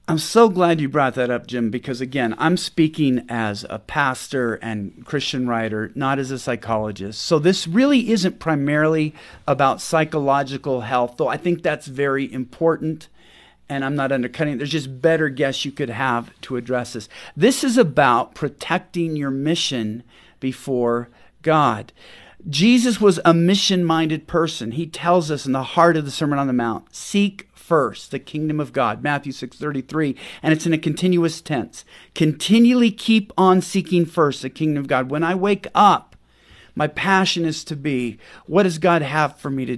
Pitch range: 130-175 Hz